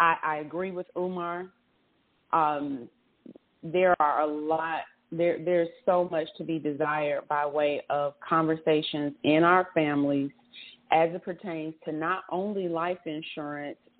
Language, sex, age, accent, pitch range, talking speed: English, female, 30-49, American, 160-200 Hz, 130 wpm